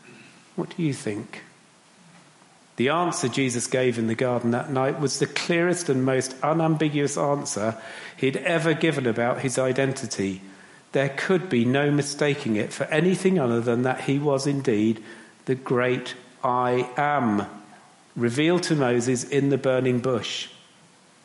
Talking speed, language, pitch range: 145 wpm, English, 120-145 Hz